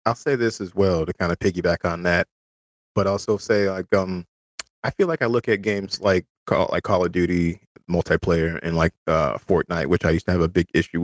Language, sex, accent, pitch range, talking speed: English, male, American, 85-105 Hz, 230 wpm